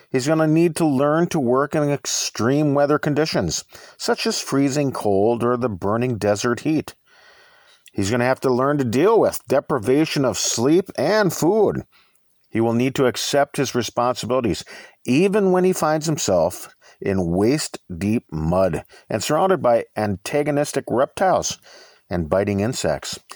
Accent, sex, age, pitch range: American, male, 50-69, 115-170 Hz